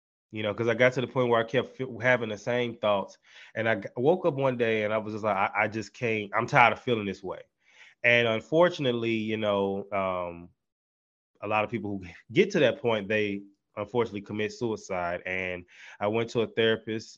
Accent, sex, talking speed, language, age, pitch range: American, male, 210 wpm, English, 20-39, 100-120 Hz